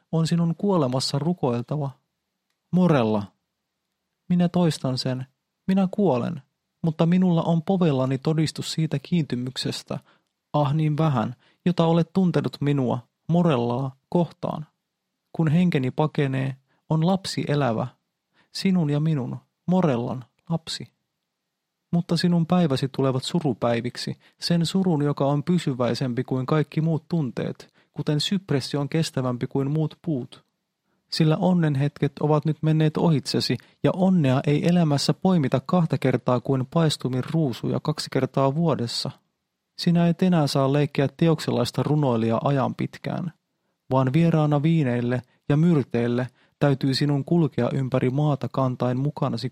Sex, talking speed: male, 120 wpm